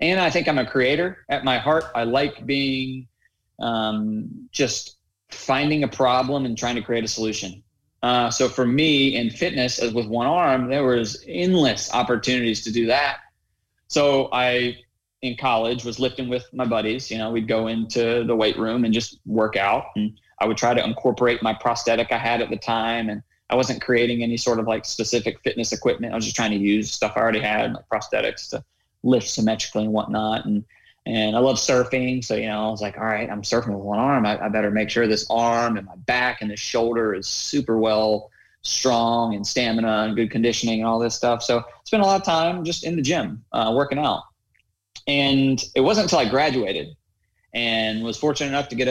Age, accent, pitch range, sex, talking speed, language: 20-39, American, 110-125 Hz, male, 205 wpm, English